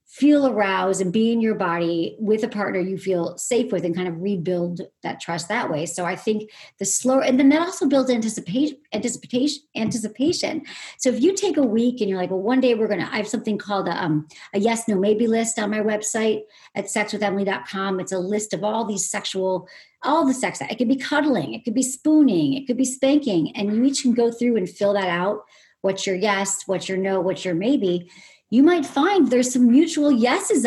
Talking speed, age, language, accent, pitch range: 220 wpm, 40-59, English, American, 195-290 Hz